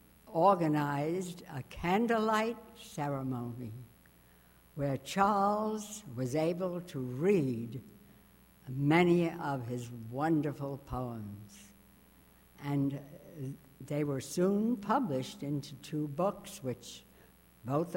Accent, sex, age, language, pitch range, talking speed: American, female, 60-79, English, 115-195 Hz, 85 wpm